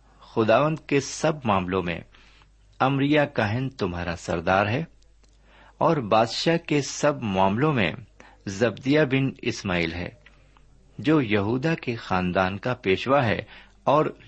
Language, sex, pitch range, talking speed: Urdu, male, 95-135 Hz, 120 wpm